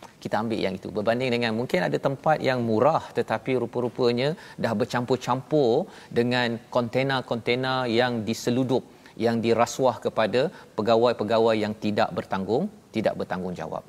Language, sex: Malayalam, male